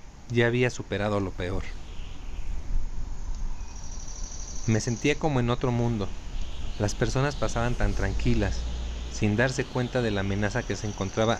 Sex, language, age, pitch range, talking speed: male, Spanish, 40-59, 95-120 Hz, 130 wpm